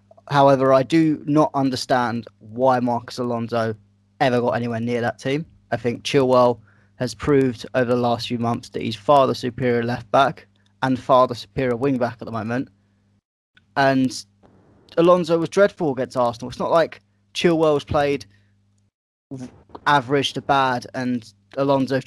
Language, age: English, 20-39